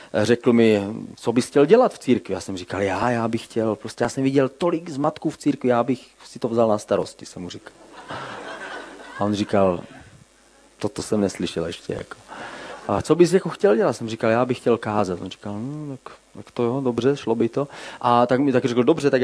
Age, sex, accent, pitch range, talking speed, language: 30-49, male, native, 110-135 Hz, 230 wpm, Czech